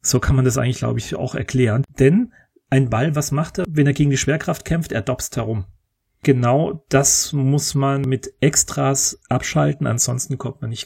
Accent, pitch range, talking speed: German, 115-145 Hz, 195 wpm